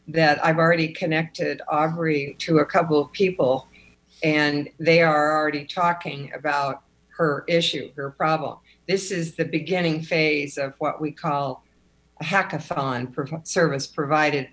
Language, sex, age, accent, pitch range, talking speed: English, female, 60-79, American, 150-205 Hz, 135 wpm